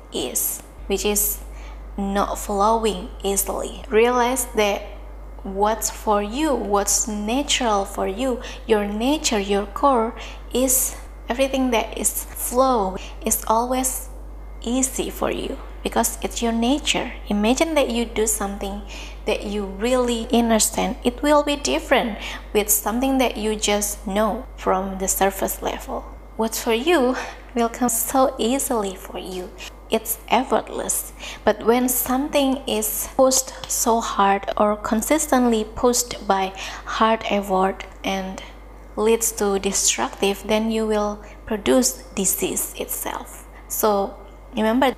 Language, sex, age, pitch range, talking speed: English, female, 20-39, 205-250 Hz, 125 wpm